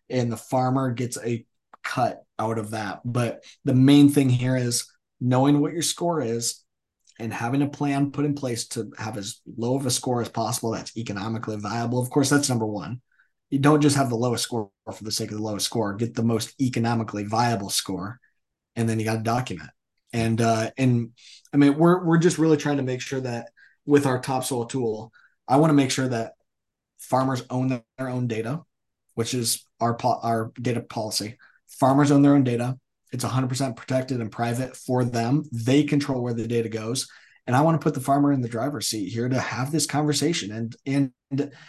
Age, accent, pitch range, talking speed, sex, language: 20-39, American, 115-140 Hz, 205 wpm, male, English